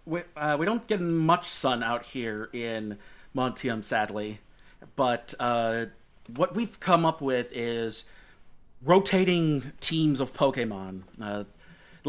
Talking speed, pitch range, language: 125 wpm, 120-155 Hz, English